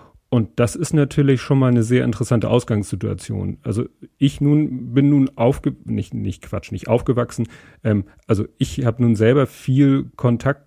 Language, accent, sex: German, German, male